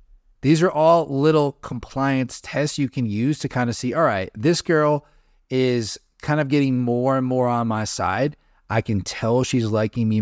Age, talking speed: 30-49, 195 wpm